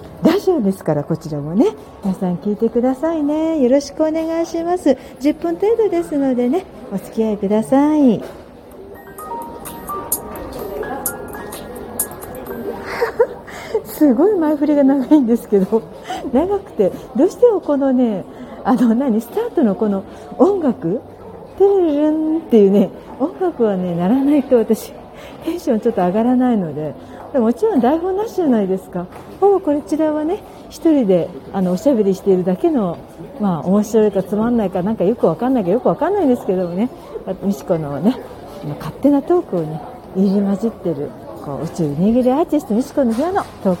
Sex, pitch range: female, 195-305 Hz